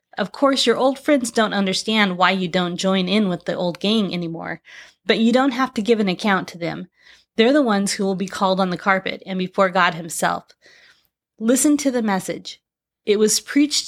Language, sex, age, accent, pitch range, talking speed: English, female, 30-49, American, 190-240 Hz, 210 wpm